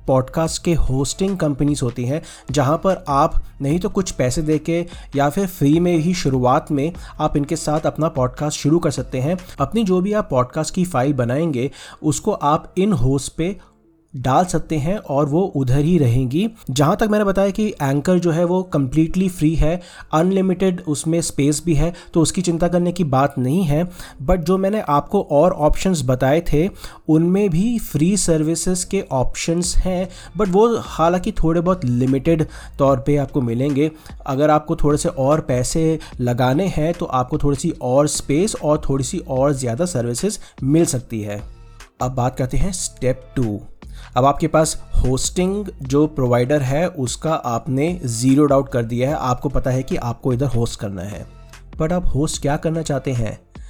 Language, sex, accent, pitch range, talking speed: Hindi, male, native, 130-175 Hz, 180 wpm